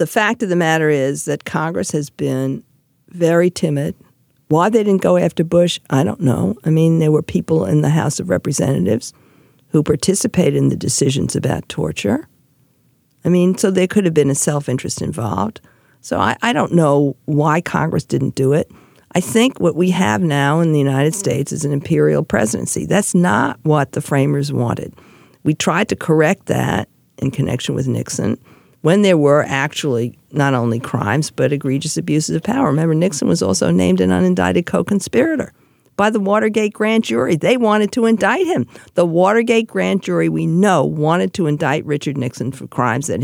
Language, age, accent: English, 50-69, American